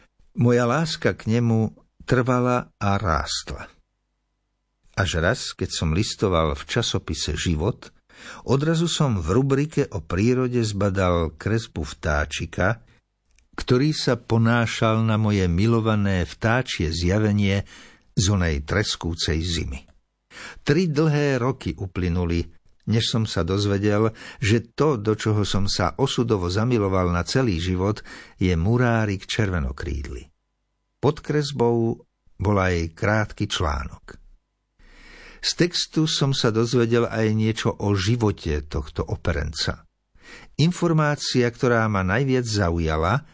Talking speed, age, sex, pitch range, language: 110 wpm, 60-79, male, 90-125 Hz, Slovak